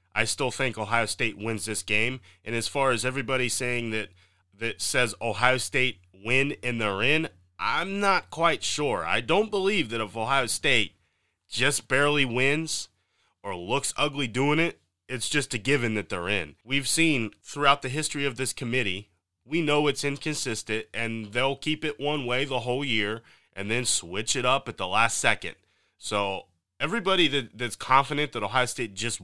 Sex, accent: male, American